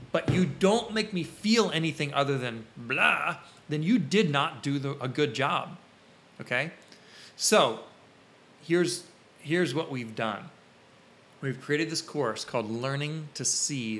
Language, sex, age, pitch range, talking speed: English, male, 30-49, 125-170 Hz, 145 wpm